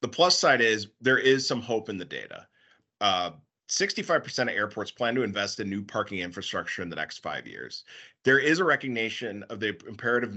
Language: English